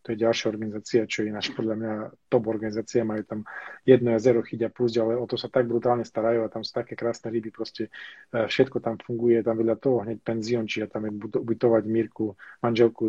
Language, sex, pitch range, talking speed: Czech, male, 110-120 Hz, 220 wpm